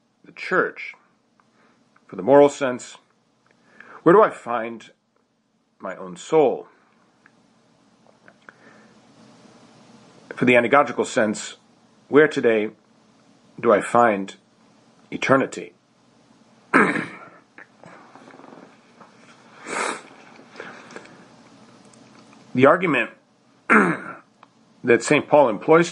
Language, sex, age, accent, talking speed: English, male, 50-69, American, 65 wpm